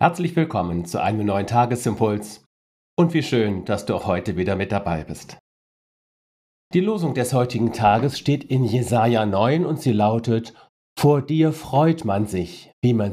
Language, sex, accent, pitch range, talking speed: German, male, German, 105-145 Hz, 165 wpm